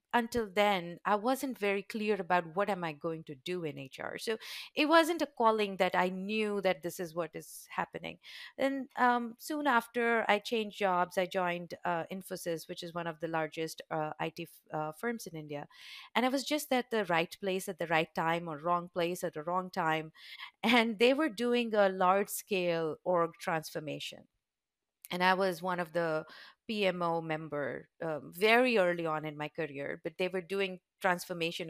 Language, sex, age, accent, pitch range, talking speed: English, female, 50-69, Indian, 170-215 Hz, 190 wpm